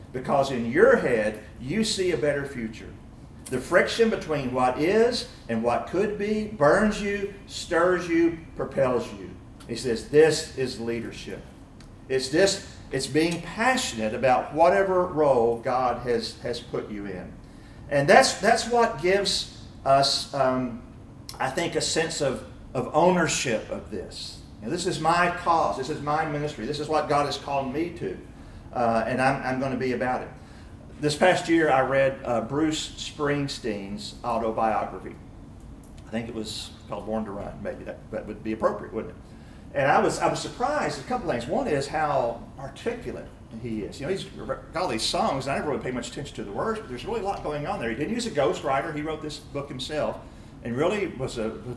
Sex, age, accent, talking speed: male, 50-69, American, 195 wpm